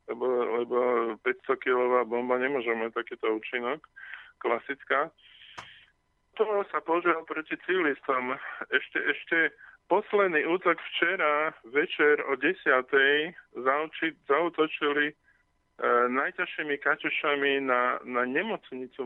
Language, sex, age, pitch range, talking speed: Slovak, male, 20-39, 130-155 Hz, 95 wpm